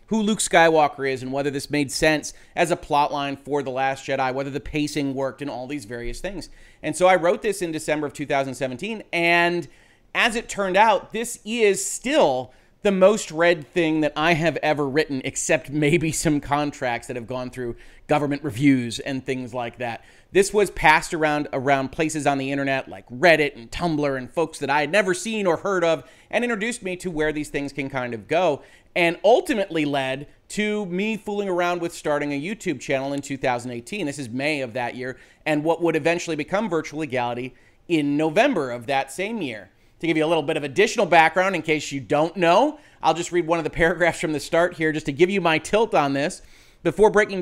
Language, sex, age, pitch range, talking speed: English, male, 30-49, 140-185 Hz, 215 wpm